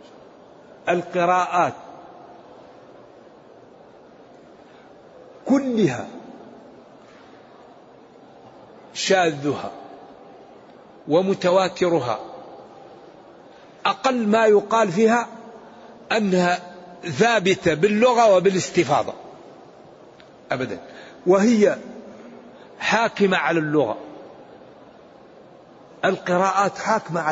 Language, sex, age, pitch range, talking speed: Arabic, male, 60-79, 165-210 Hz, 40 wpm